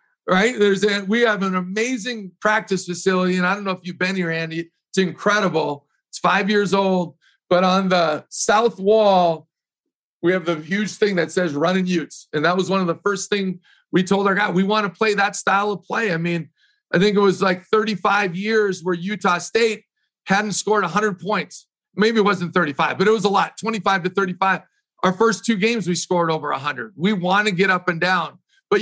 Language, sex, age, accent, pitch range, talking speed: English, male, 50-69, American, 180-210 Hz, 210 wpm